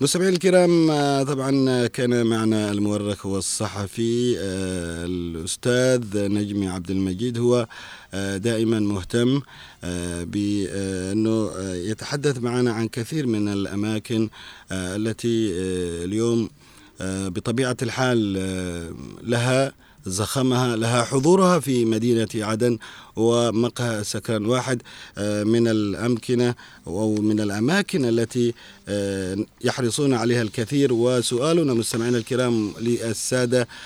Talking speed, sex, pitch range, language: 85 wpm, male, 105-125 Hz, Arabic